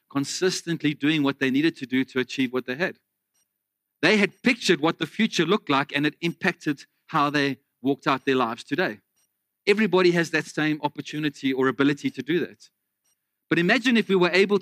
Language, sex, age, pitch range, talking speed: English, male, 40-59, 135-185 Hz, 190 wpm